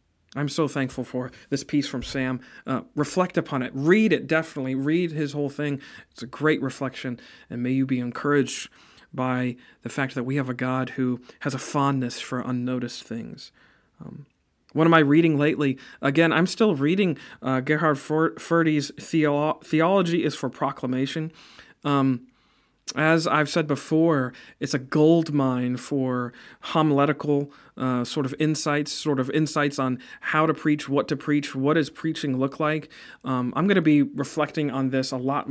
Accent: American